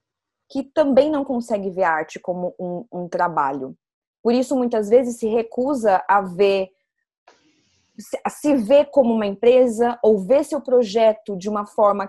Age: 20-39